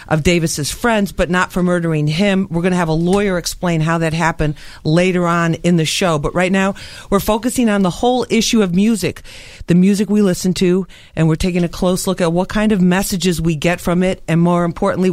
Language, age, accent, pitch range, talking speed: English, 50-69, American, 160-195 Hz, 225 wpm